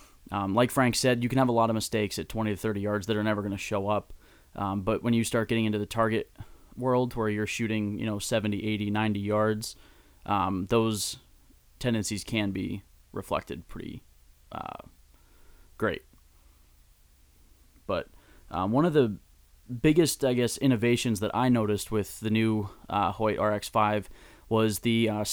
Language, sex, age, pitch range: English, male, 20-39, 105-125 Hz